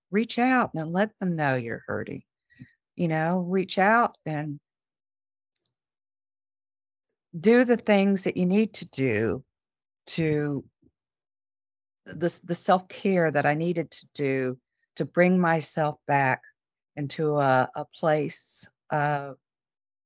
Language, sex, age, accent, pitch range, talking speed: English, female, 50-69, American, 140-200 Hz, 115 wpm